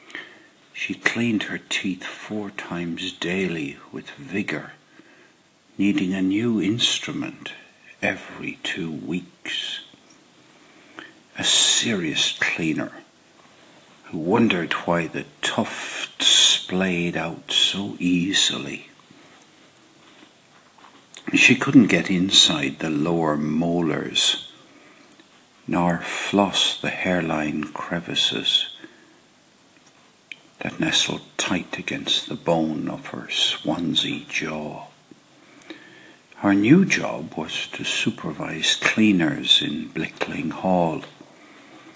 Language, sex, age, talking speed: English, male, 60-79, 85 wpm